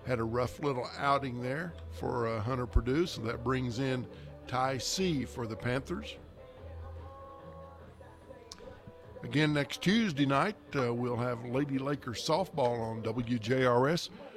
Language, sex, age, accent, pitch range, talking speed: English, male, 50-69, American, 115-145 Hz, 130 wpm